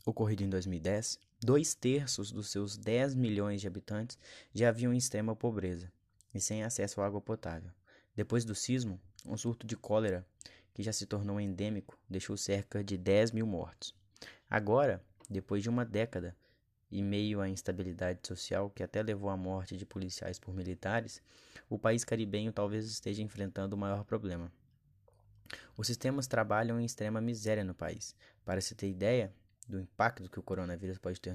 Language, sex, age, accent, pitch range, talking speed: Portuguese, male, 20-39, Brazilian, 95-115 Hz, 165 wpm